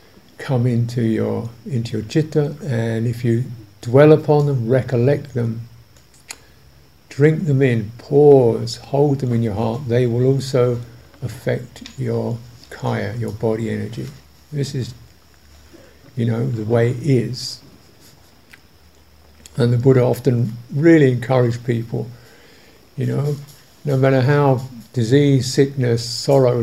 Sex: male